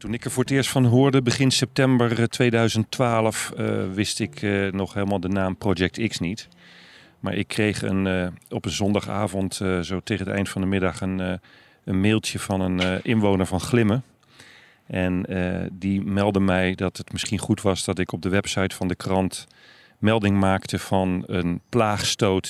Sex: male